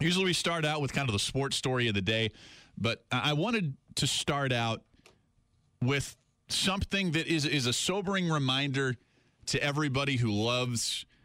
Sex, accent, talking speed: male, American, 165 wpm